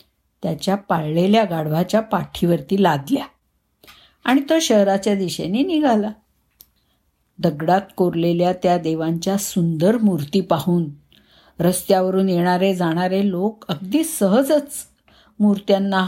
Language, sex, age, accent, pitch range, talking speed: Marathi, female, 50-69, native, 170-235 Hz, 90 wpm